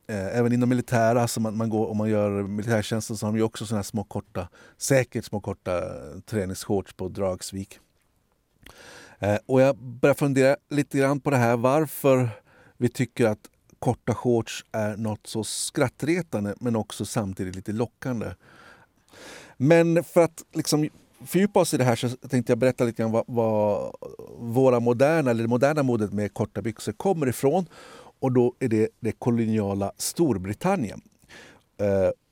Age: 50-69